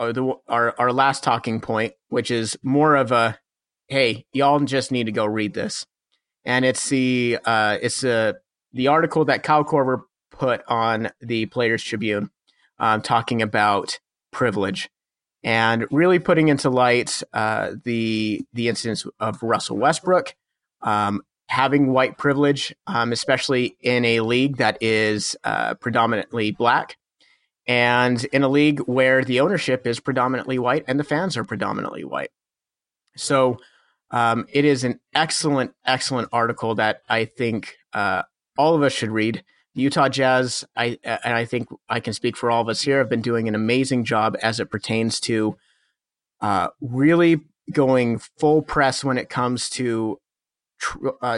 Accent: American